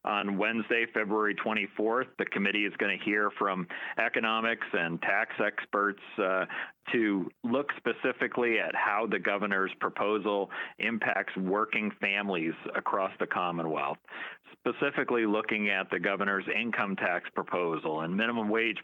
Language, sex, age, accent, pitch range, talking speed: English, male, 40-59, American, 100-115 Hz, 130 wpm